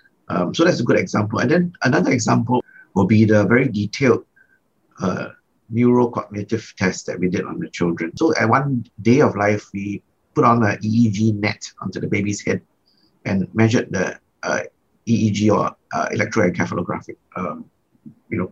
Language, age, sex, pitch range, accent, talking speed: English, 50-69, male, 95-115 Hz, Malaysian, 160 wpm